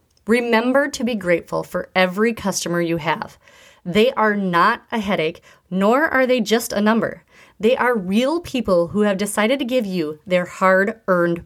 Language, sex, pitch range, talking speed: English, female, 175-270 Hz, 175 wpm